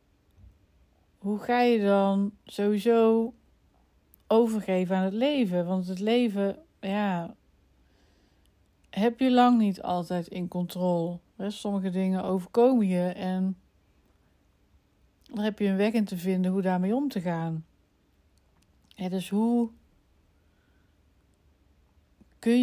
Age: 60-79